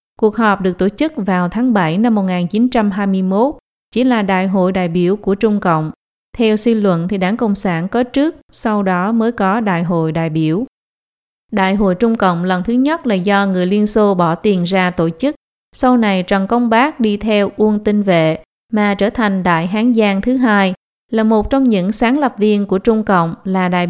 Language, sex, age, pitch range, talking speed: Vietnamese, female, 20-39, 185-230 Hz, 210 wpm